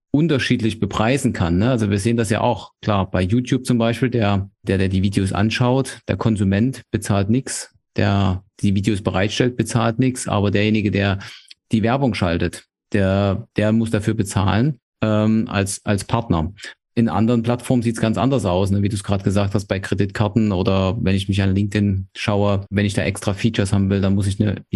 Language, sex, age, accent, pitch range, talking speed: English, male, 30-49, German, 100-120 Hz, 195 wpm